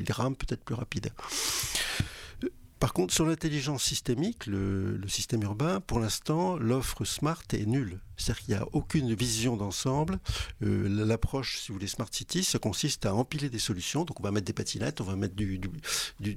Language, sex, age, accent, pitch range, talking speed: French, male, 50-69, French, 100-130 Hz, 190 wpm